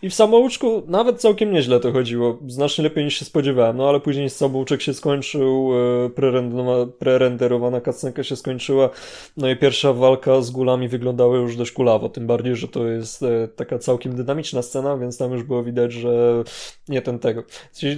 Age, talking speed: 20-39, 175 wpm